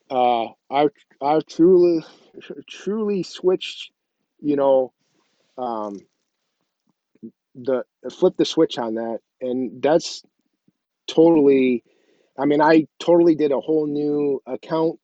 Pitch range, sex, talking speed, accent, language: 125-145 Hz, male, 110 wpm, American, English